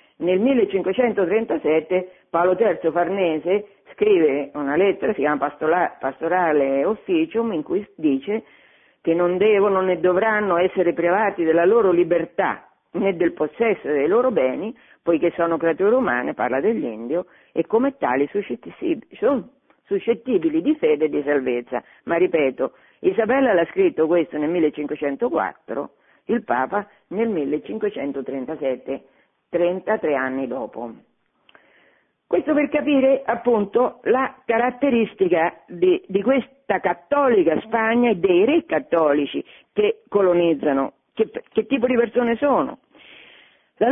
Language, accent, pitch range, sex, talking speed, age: Italian, native, 155-235 Hz, female, 120 wpm, 50-69